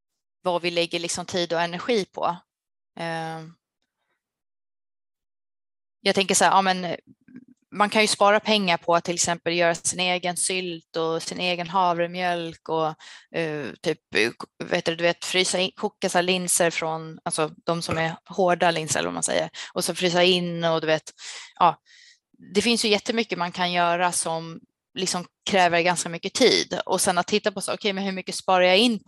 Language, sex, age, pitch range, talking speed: Swedish, female, 20-39, 170-195 Hz, 180 wpm